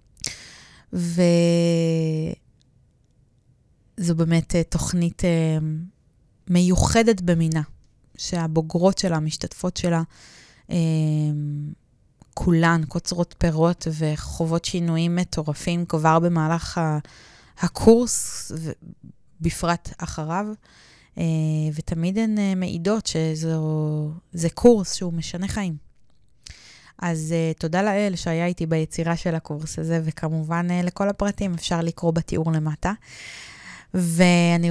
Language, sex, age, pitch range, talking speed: Hebrew, female, 20-39, 155-180 Hz, 95 wpm